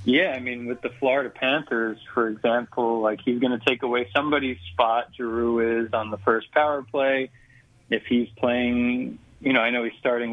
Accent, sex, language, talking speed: American, male, English, 190 wpm